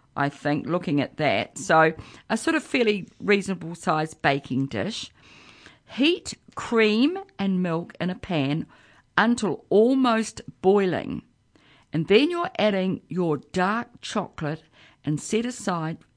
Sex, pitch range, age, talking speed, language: female, 155-220 Hz, 50-69, 125 wpm, English